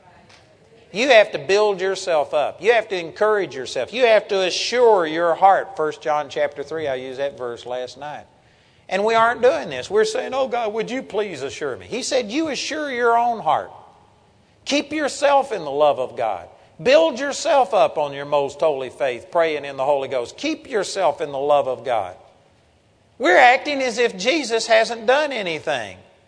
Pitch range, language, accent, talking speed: 160-235 Hz, English, American, 190 wpm